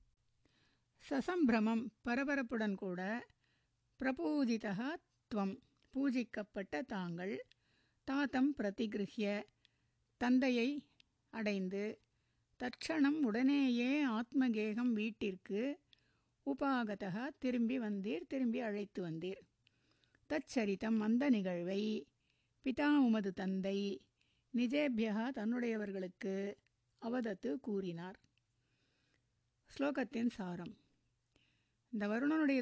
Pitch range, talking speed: 185-250 Hz, 60 wpm